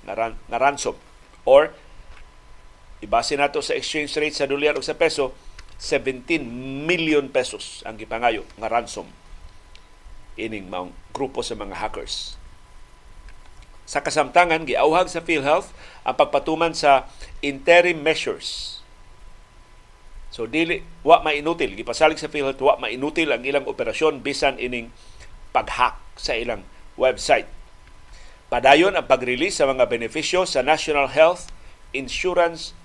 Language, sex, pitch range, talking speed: Filipino, male, 115-155 Hz, 125 wpm